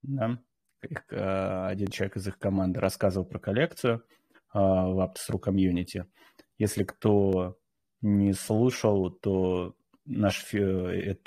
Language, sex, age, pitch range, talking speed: Russian, male, 20-39, 95-110 Hz, 105 wpm